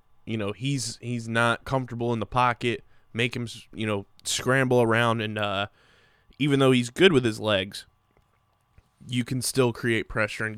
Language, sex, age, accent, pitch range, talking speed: English, male, 20-39, American, 100-120 Hz, 170 wpm